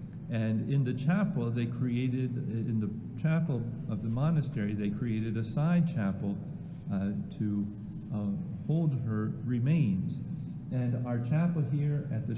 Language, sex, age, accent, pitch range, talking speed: English, male, 50-69, American, 105-145 Hz, 140 wpm